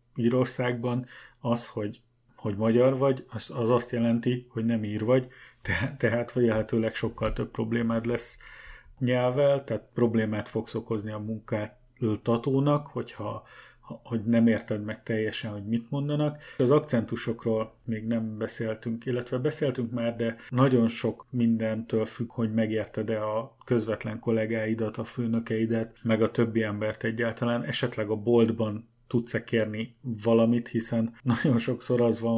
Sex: male